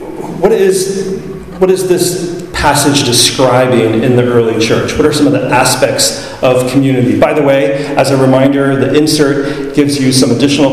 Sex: male